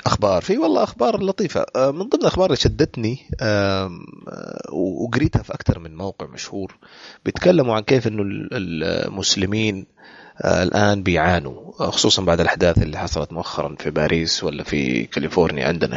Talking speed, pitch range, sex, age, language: 130 wpm, 90-110 Hz, male, 30-49, Arabic